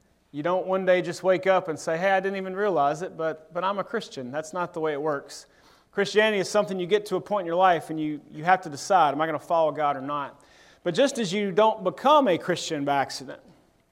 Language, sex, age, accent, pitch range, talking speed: English, male, 30-49, American, 150-190 Hz, 265 wpm